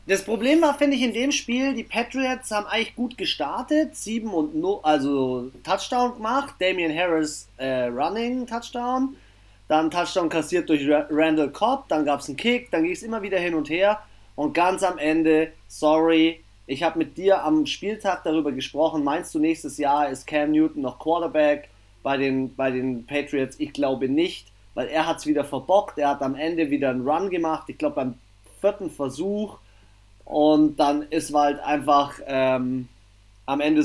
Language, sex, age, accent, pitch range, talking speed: German, male, 30-49, German, 135-210 Hz, 175 wpm